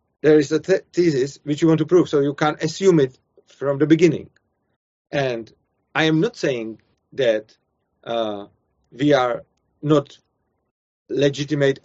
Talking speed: 140 wpm